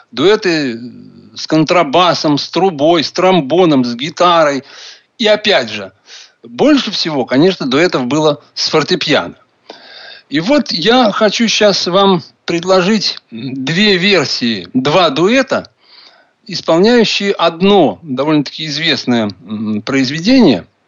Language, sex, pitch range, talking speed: Russian, male, 145-220 Hz, 100 wpm